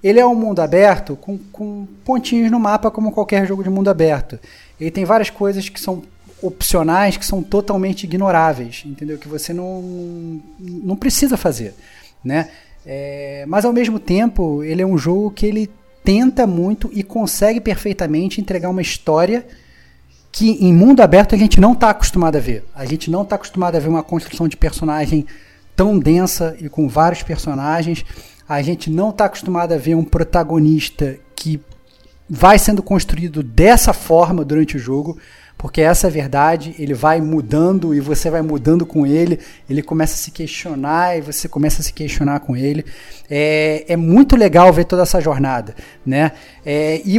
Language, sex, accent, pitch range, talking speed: Portuguese, male, Brazilian, 150-195 Hz, 170 wpm